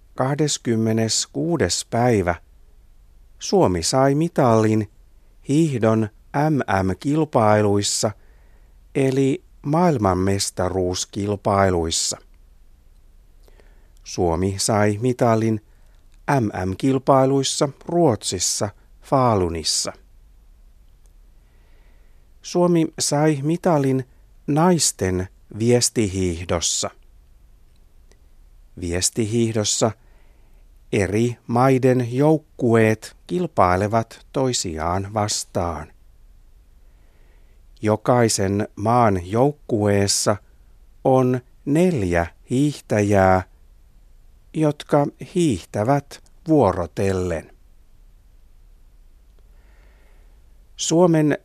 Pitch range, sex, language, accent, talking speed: 90-130 Hz, male, Finnish, native, 45 wpm